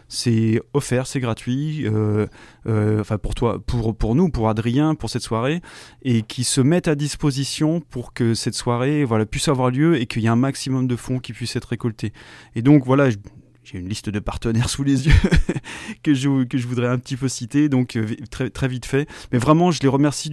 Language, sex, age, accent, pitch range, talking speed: French, male, 20-39, French, 115-145 Hz, 215 wpm